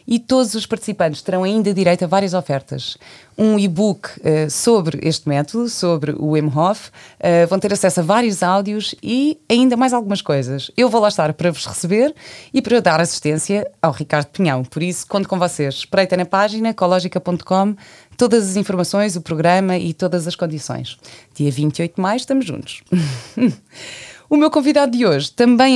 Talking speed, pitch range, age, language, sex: 175 wpm, 155-210 Hz, 20-39, Portuguese, female